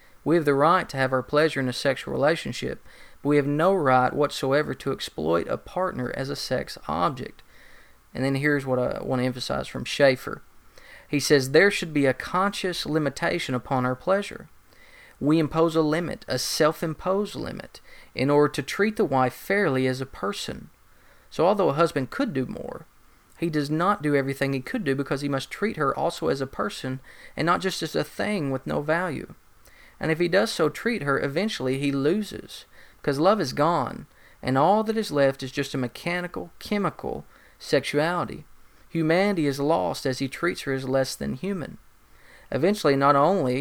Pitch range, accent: 135-175 Hz, American